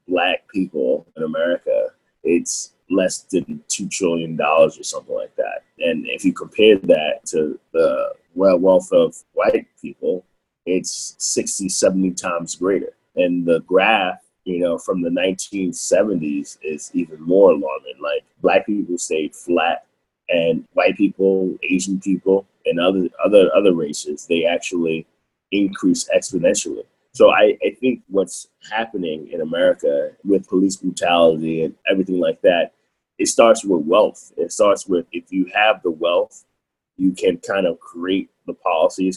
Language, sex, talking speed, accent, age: English, male, 140 wpm, American, 20-39